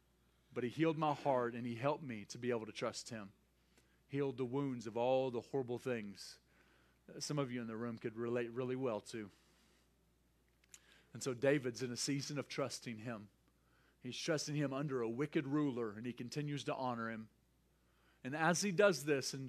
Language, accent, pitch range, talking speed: English, American, 120-165 Hz, 195 wpm